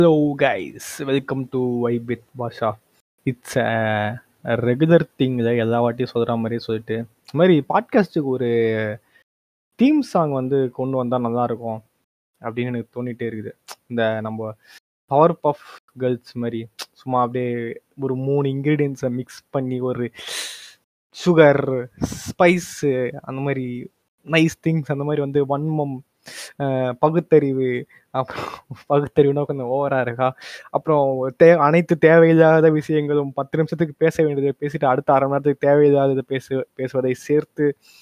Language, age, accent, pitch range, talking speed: Tamil, 20-39, native, 125-155 Hz, 110 wpm